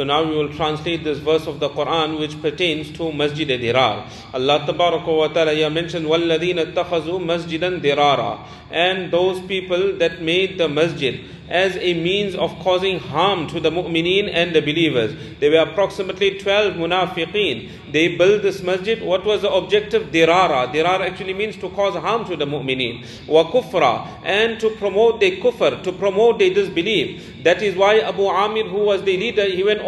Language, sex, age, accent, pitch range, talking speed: English, male, 40-59, Indian, 165-225 Hz, 175 wpm